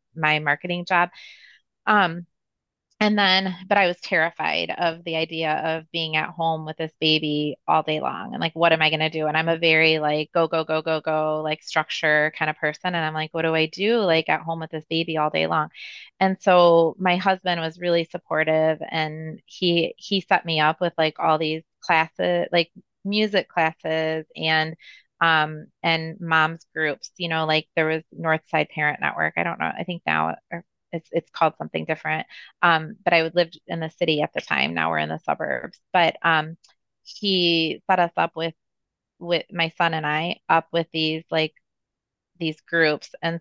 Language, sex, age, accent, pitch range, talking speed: English, female, 20-39, American, 155-170 Hz, 200 wpm